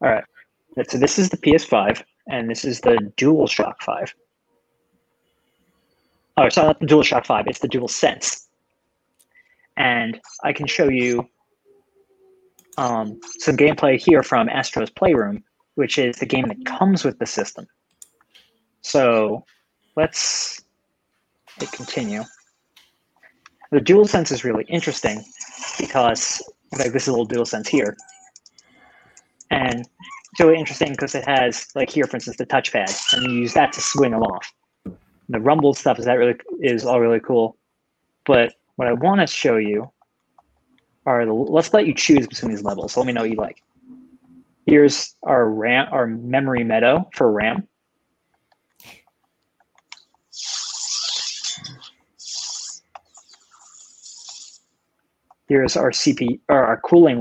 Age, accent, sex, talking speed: 30-49, American, male, 135 wpm